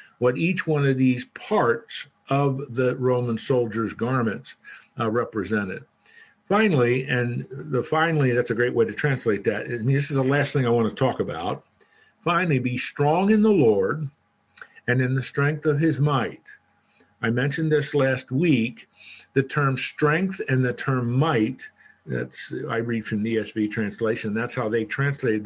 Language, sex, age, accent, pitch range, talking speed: English, male, 50-69, American, 115-150 Hz, 170 wpm